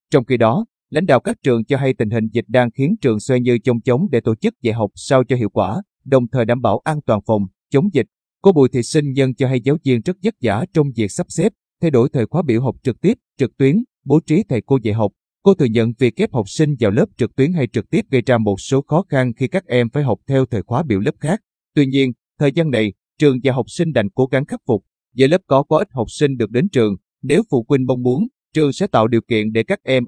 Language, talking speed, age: Vietnamese, 275 wpm, 20-39